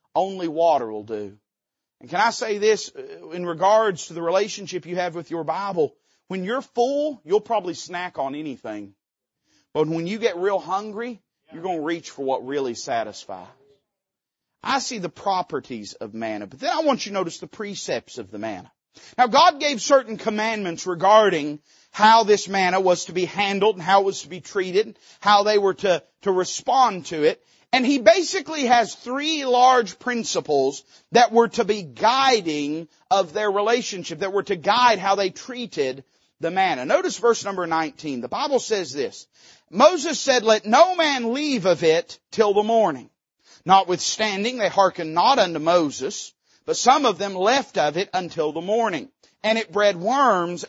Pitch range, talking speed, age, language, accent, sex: 175-245 Hz, 180 wpm, 40-59, English, American, male